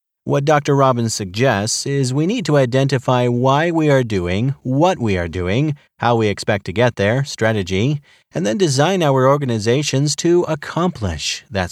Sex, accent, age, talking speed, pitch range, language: male, American, 30-49, 165 wpm, 110-145 Hz, English